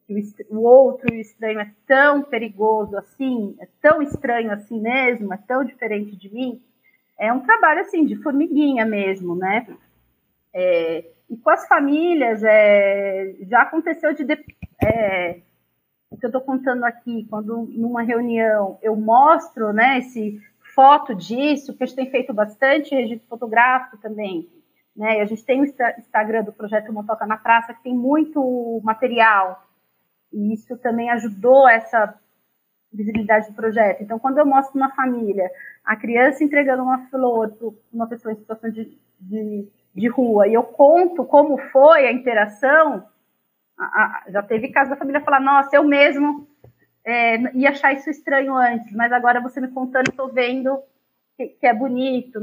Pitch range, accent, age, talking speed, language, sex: 220-270 Hz, Brazilian, 40-59, 155 wpm, Portuguese, female